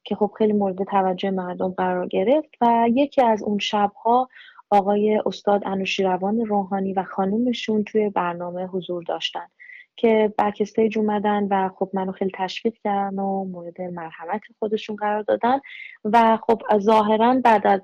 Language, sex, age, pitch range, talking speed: Persian, female, 30-49, 190-230 Hz, 150 wpm